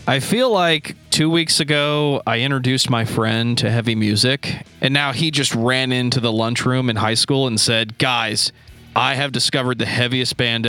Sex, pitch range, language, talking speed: male, 110-135 Hz, English, 185 wpm